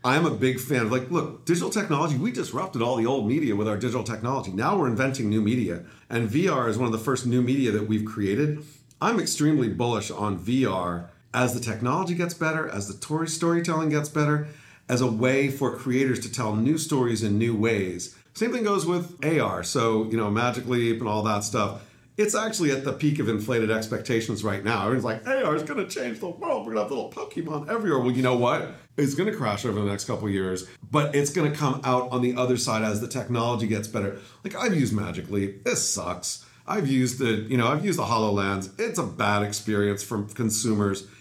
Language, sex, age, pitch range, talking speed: English, male, 40-59, 110-145 Hz, 220 wpm